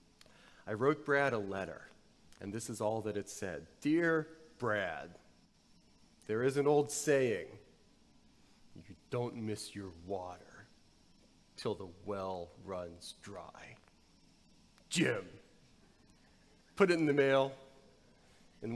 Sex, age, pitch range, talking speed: male, 40-59, 110-165 Hz, 115 wpm